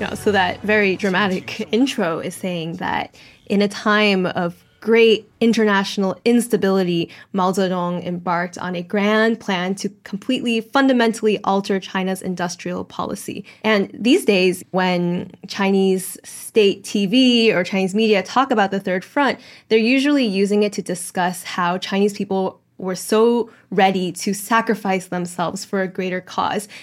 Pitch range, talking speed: 185-225 Hz, 140 wpm